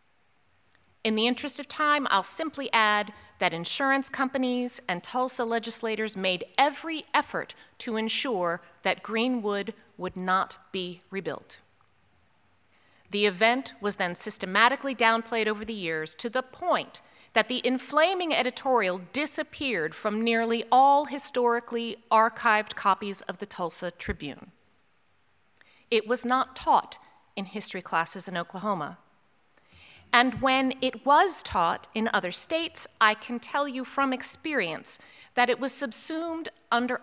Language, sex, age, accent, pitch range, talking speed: English, female, 30-49, American, 195-255 Hz, 130 wpm